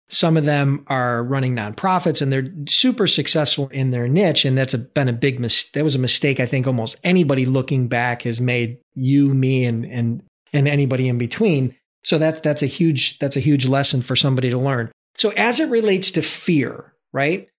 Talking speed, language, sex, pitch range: 205 wpm, English, male, 130-165 Hz